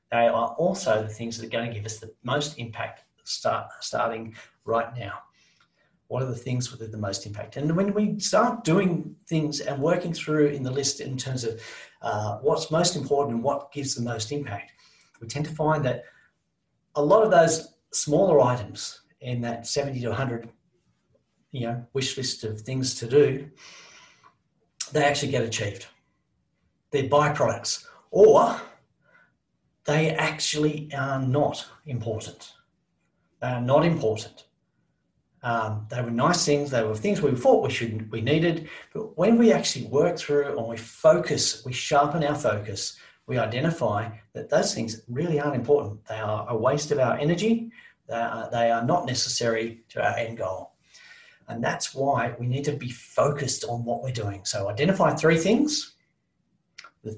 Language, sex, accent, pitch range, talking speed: English, male, Australian, 115-150 Hz, 170 wpm